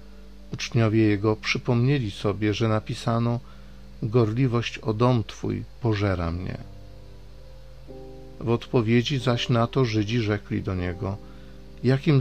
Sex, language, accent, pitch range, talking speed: male, Polish, native, 100-120 Hz, 110 wpm